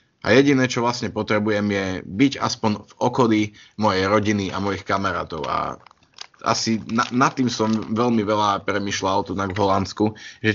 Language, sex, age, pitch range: Slovak, male, 20-39, 100-115 Hz